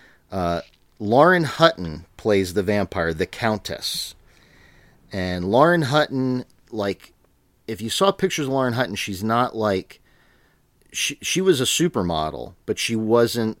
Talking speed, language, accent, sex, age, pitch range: 130 wpm, English, American, male, 40-59, 85-115 Hz